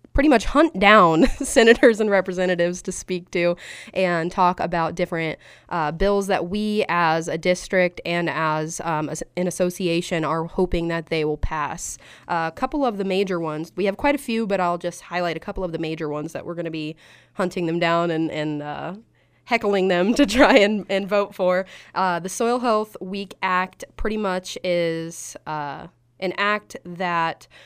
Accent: American